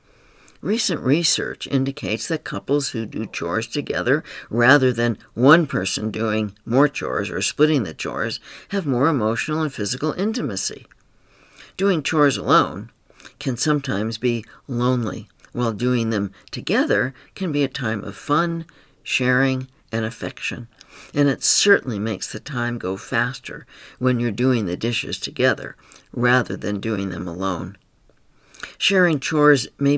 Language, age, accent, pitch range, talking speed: English, 60-79, American, 115-150 Hz, 135 wpm